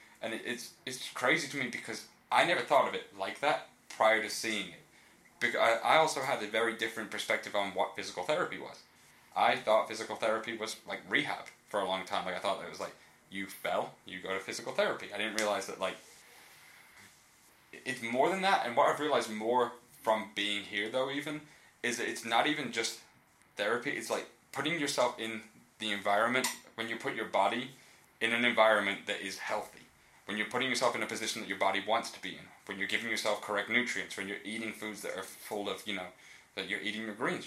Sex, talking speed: male, 215 wpm